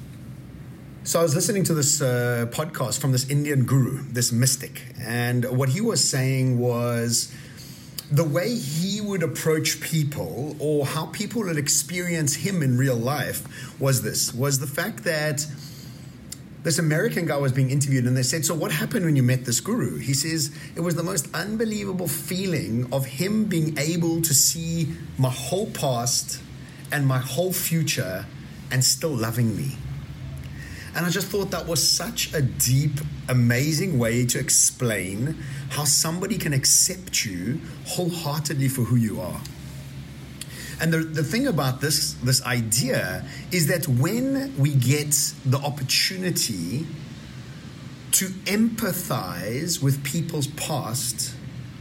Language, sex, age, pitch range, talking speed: English, male, 30-49, 130-165 Hz, 145 wpm